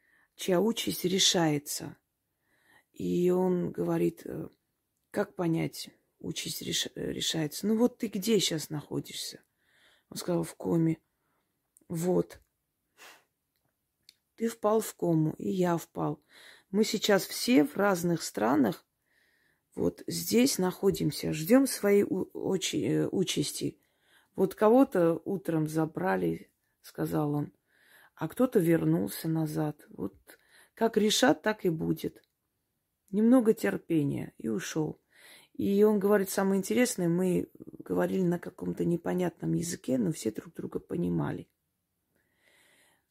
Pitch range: 155-205 Hz